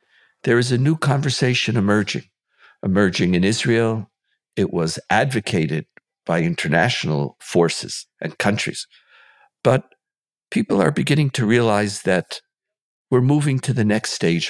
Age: 50-69